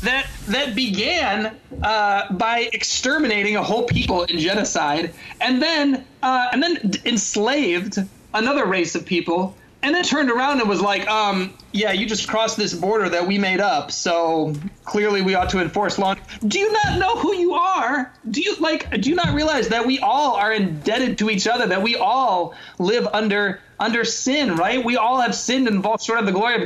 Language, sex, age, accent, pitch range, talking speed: English, male, 30-49, American, 180-235 Hz, 195 wpm